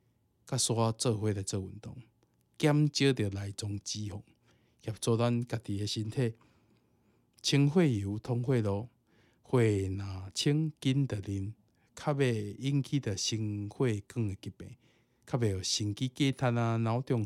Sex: male